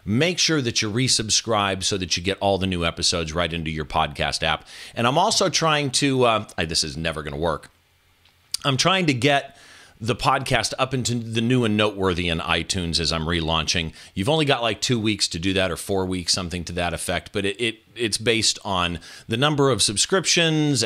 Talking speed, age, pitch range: 215 wpm, 40-59, 90-135 Hz